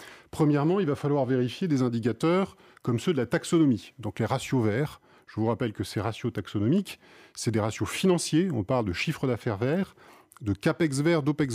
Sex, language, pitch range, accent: male, French, 115-155 Hz, French